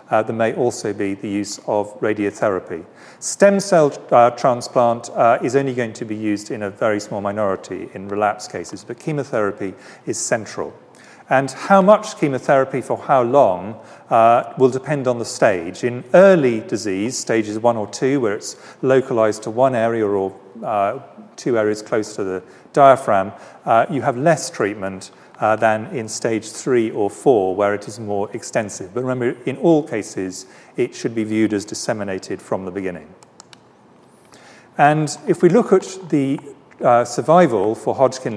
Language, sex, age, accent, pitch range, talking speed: English, male, 40-59, British, 105-135 Hz, 165 wpm